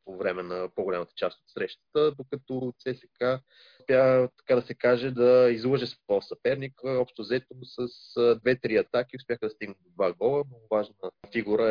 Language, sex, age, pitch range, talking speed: Bulgarian, male, 30-49, 110-150 Hz, 160 wpm